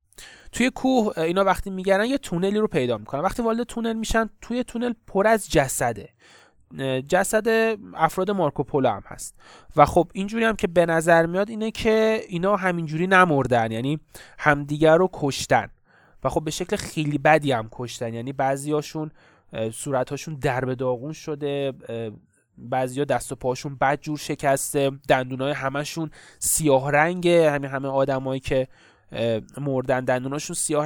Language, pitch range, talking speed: Persian, 130-185 Hz, 150 wpm